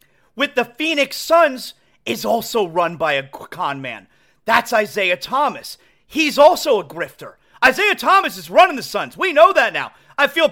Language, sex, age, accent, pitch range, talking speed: English, male, 40-59, American, 195-300 Hz, 170 wpm